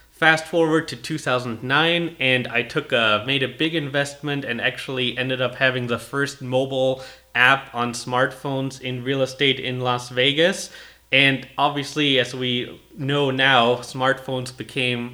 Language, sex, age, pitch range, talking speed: English, male, 20-39, 120-140 Hz, 145 wpm